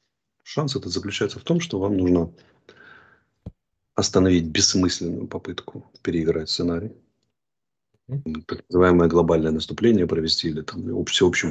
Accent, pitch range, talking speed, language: native, 85-110 Hz, 110 wpm, Russian